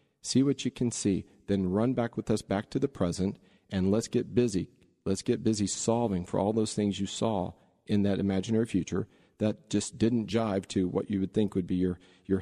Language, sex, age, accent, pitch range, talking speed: English, male, 40-59, American, 95-115 Hz, 215 wpm